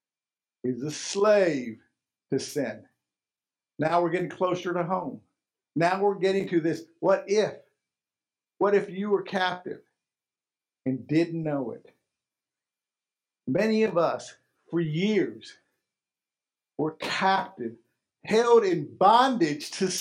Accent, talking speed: American, 115 wpm